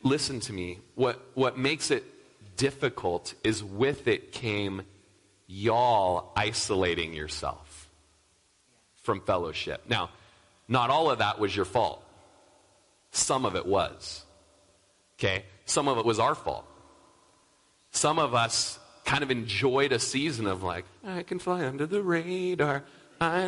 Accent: American